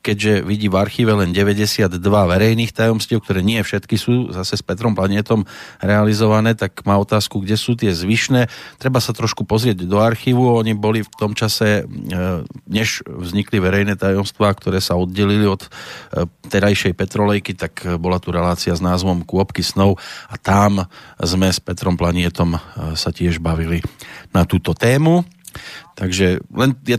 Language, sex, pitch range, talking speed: Slovak, male, 95-120 Hz, 150 wpm